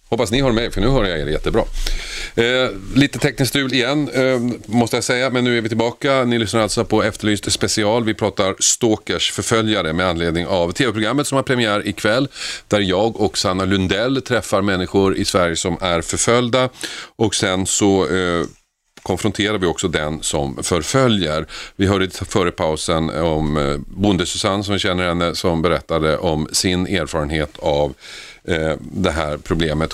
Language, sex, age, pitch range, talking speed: Swedish, male, 40-59, 85-110 Hz, 165 wpm